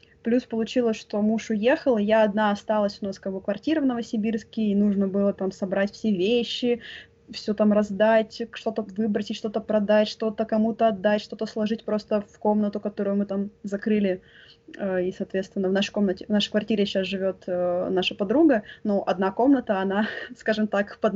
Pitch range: 200-230 Hz